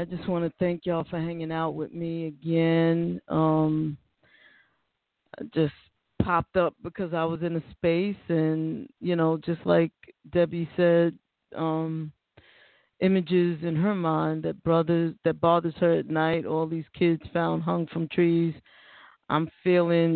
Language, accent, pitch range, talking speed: English, American, 155-175 Hz, 150 wpm